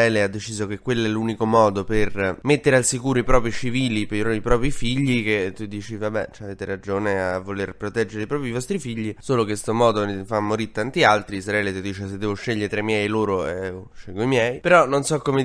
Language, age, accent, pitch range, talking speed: Italian, 20-39, native, 110-135 Hz, 230 wpm